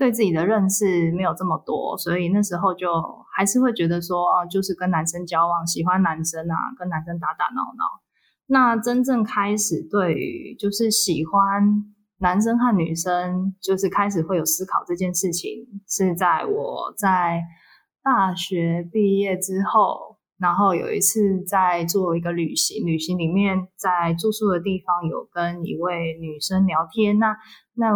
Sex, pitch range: female, 175-210 Hz